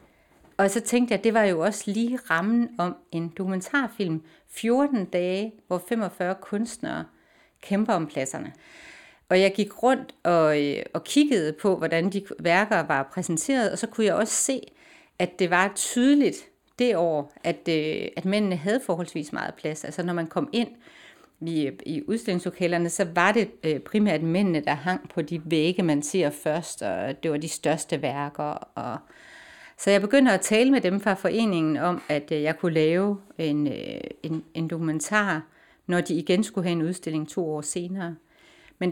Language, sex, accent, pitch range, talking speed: Danish, female, native, 165-220 Hz, 170 wpm